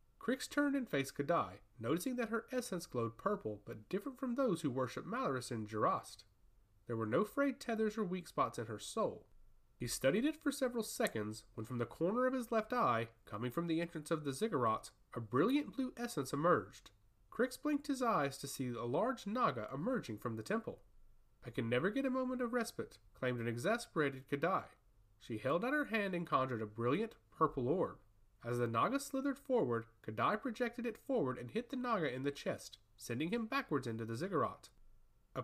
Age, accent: 30-49, American